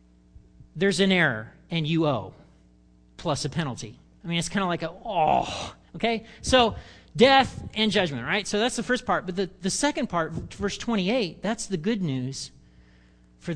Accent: American